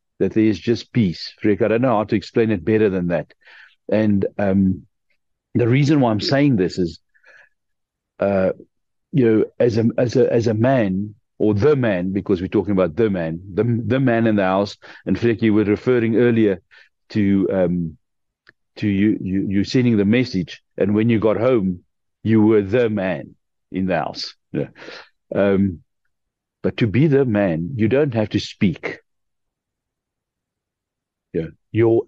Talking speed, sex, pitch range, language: 170 wpm, male, 95-115 Hz, English